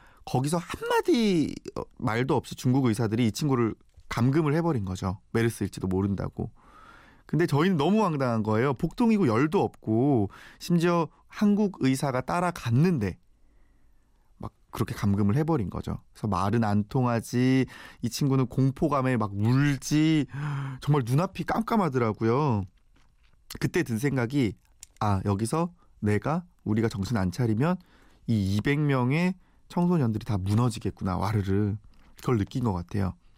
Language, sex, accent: Korean, male, native